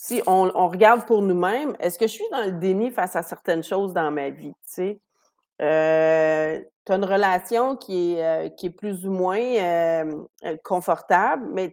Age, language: 30-49, French